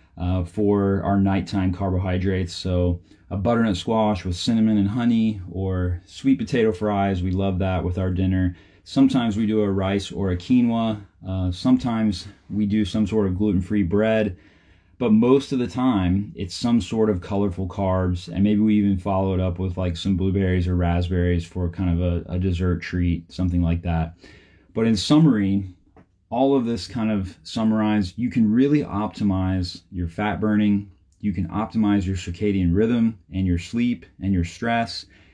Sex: male